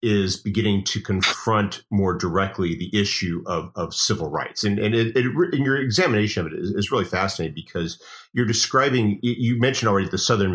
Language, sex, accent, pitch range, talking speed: English, male, American, 90-115 Hz, 190 wpm